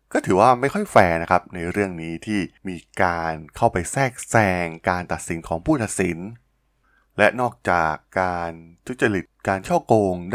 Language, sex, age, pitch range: Thai, male, 20-39, 85-110 Hz